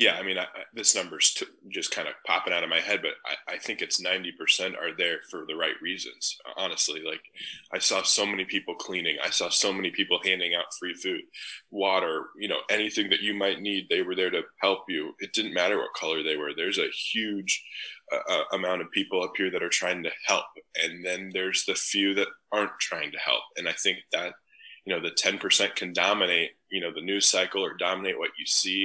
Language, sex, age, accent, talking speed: English, male, 10-29, American, 225 wpm